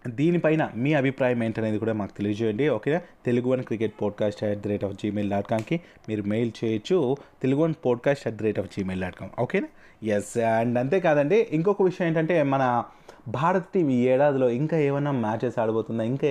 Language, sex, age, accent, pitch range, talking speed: Telugu, male, 20-39, native, 115-150 Hz, 175 wpm